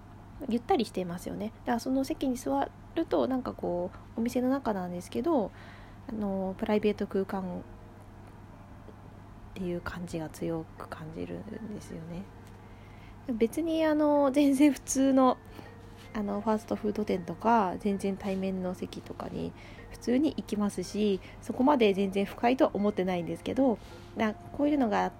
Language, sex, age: Japanese, female, 20-39